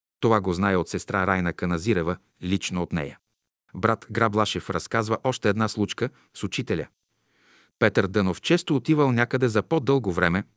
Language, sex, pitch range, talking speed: Bulgarian, male, 95-120 Hz, 150 wpm